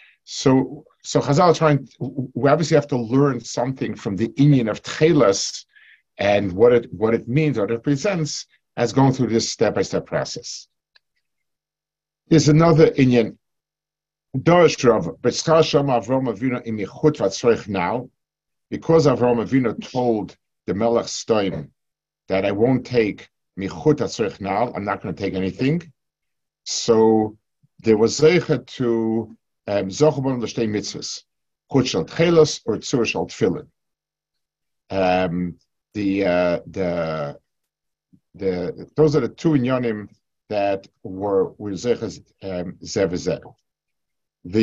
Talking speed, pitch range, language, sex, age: 85 wpm, 105-150 Hz, English, male, 50-69